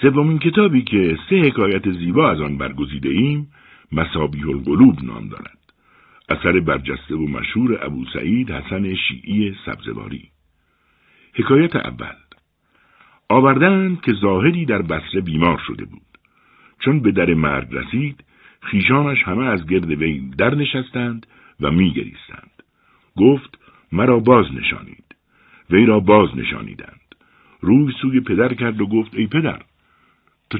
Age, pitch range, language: 60-79, 85-135 Hz, Persian